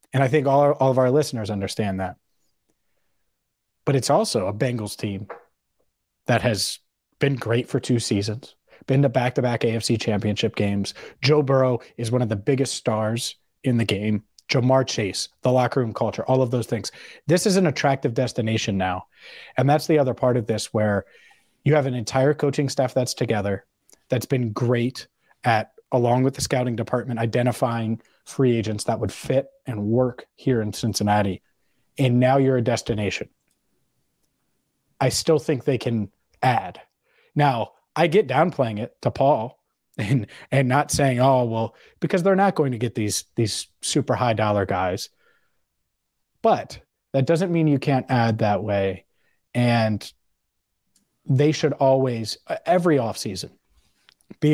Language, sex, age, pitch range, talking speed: English, male, 30-49, 110-135 Hz, 160 wpm